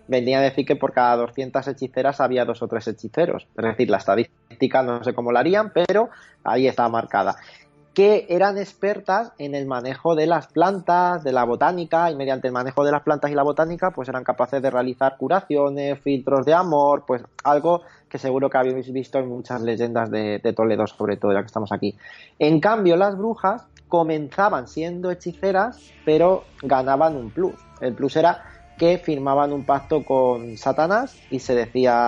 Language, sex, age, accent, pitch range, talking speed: Spanish, male, 20-39, Spanish, 125-160 Hz, 185 wpm